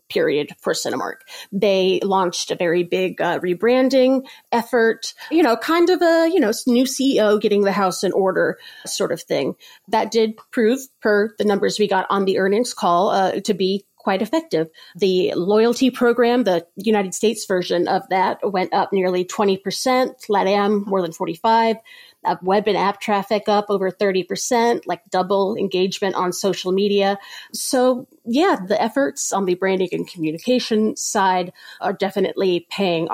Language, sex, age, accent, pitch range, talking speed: English, female, 30-49, American, 195-255 Hz, 165 wpm